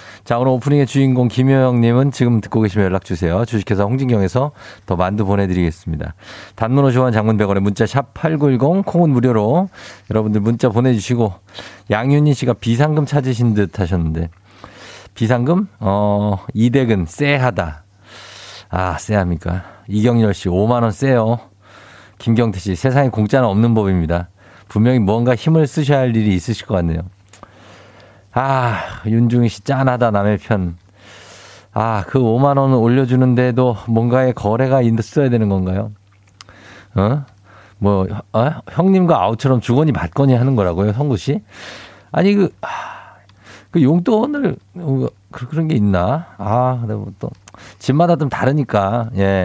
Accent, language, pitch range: native, Korean, 100-130 Hz